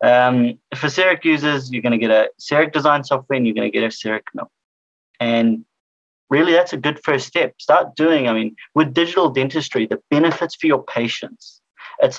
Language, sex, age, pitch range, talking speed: English, male, 30-49, 115-150 Hz, 195 wpm